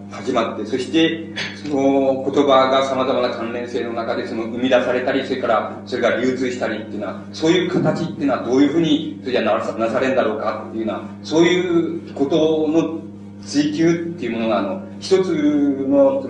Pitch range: 100-140 Hz